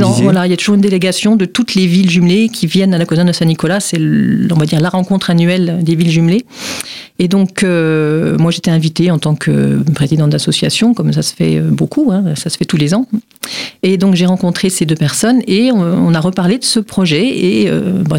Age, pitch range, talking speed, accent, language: 40-59, 160-200 Hz, 230 wpm, French, French